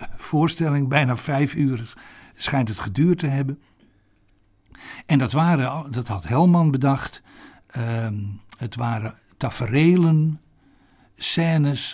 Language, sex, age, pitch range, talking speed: Dutch, male, 60-79, 110-140 Hz, 100 wpm